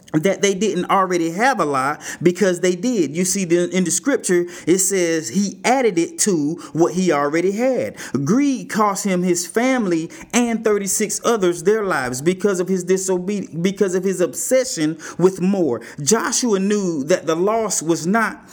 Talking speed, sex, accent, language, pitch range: 160 wpm, male, American, English, 175-220 Hz